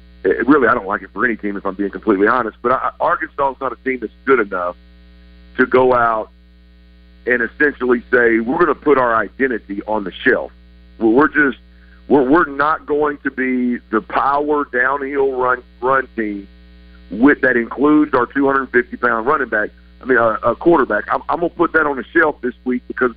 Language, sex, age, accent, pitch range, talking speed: English, male, 50-69, American, 90-130 Hz, 195 wpm